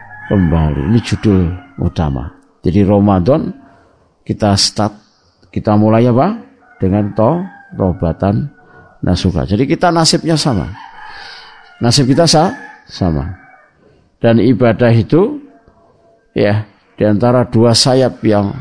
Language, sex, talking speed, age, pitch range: Indonesian, male, 105 wpm, 50-69, 100-135 Hz